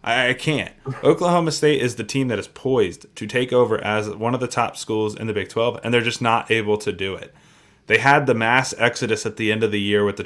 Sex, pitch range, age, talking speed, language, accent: male, 110-145 Hz, 30-49, 255 wpm, English, American